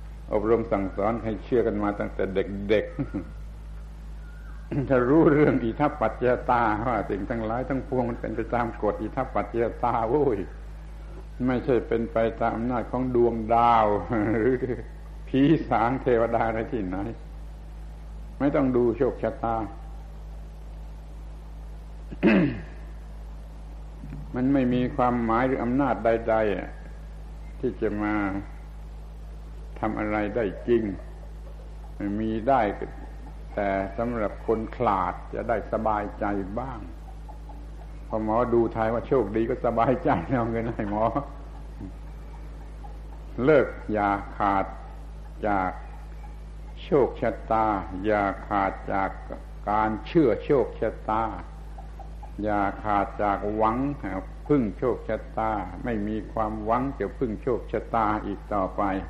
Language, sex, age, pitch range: Thai, male, 70-89, 95-115 Hz